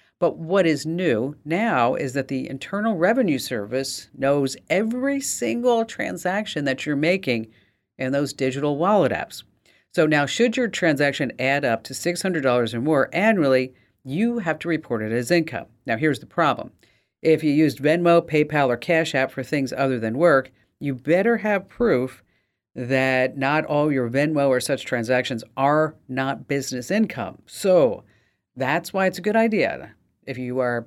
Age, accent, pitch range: 50-69, American, 130-175 Hz